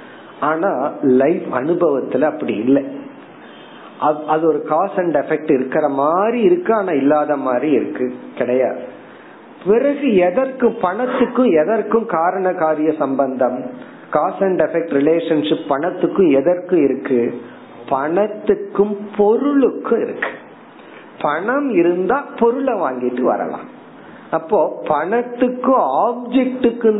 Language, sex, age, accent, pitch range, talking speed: Tamil, male, 50-69, native, 145-215 Hz, 60 wpm